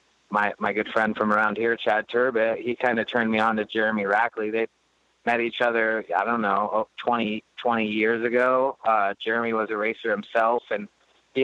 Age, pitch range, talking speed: 20-39, 105-115 Hz, 195 wpm